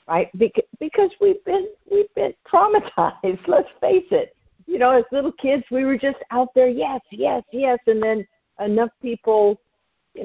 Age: 50-69